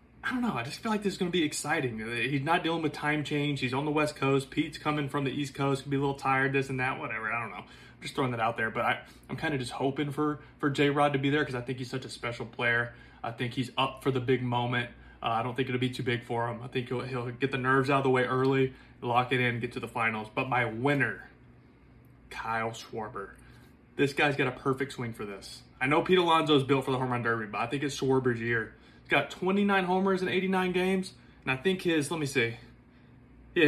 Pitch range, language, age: 125-150 Hz, English, 20-39